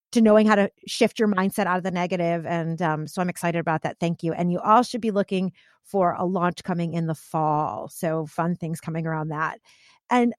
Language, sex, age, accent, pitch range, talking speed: English, female, 30-49, American, 165-210 Hz, 230 wpm